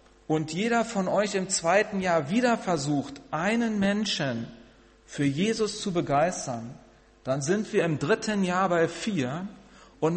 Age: 40-59